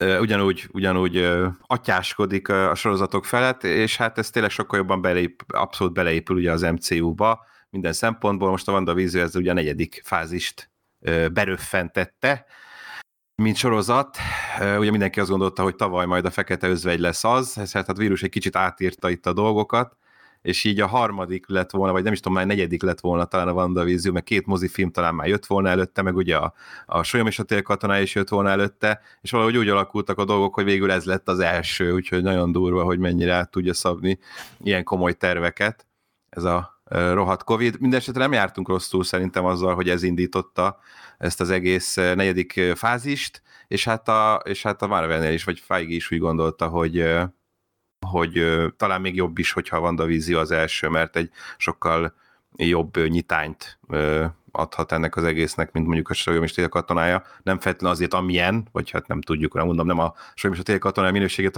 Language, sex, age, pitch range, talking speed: Hungarian, male, 30-49, 85-100 Hz, 180 wpm